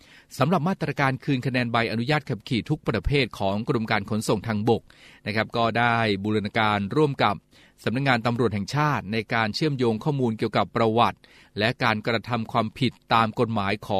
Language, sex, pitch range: Thai, male, 110-130 Hz